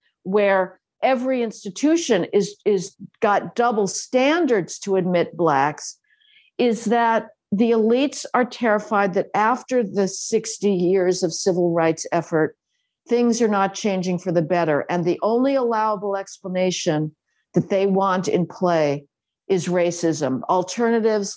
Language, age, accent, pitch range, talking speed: English, 50-69, American, 175-225 Hz, 130 wpm